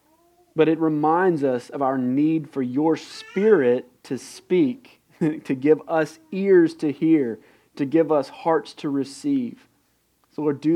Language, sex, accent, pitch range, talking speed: English, male, American, 135-185 Hz, 150 wpm